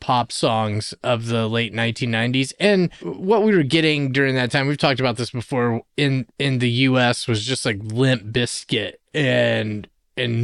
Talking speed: 170 wpm